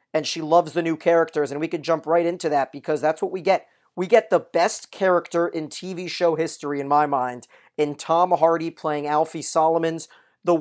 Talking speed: 210 wpm